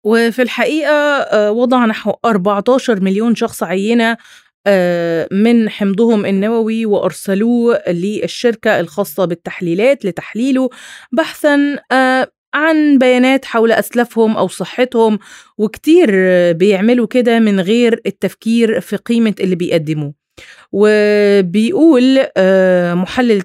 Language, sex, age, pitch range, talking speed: Arabic, female, 30-49, 195-250 Hz, 90 wpm